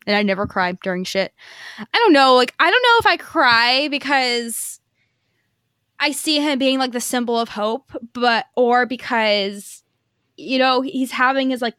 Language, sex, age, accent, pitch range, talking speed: English, female, 20-39, American, 185-235 Hz, 180 wpm